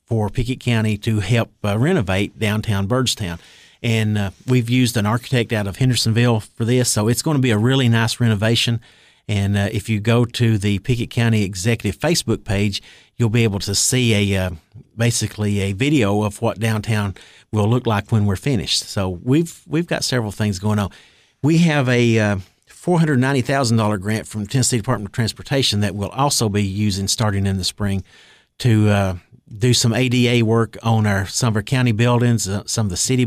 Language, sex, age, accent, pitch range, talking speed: English, male, 50-69, American, 100-120 Hz, 195 wpm